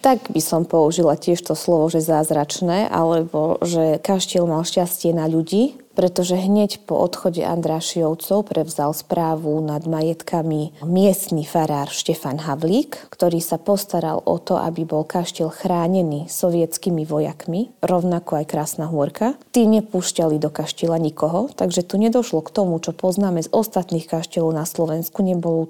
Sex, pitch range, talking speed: female, 155-180 Hz, 145 wpm